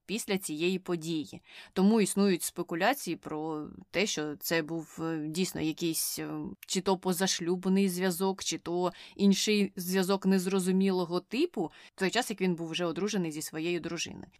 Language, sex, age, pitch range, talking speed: Ukrainian, female, 20-39, 170-205 Hz, 140 wpm